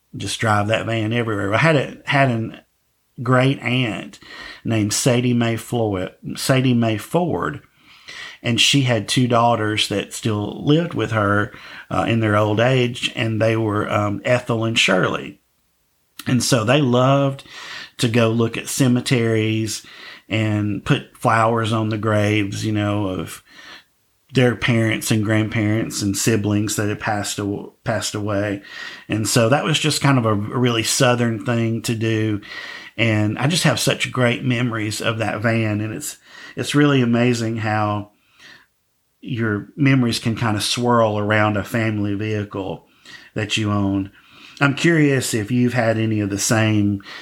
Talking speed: 155 wpm